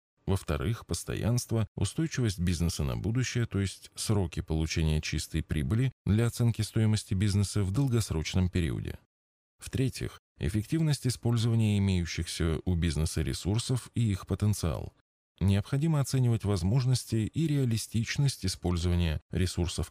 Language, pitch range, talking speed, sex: Russian, 85-120 Hz, 110 wpm, male